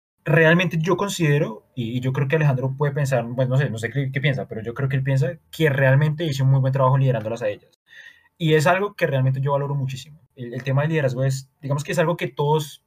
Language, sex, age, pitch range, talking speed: Spanish, male, 20-39, 120-150 Hz, 250 wpm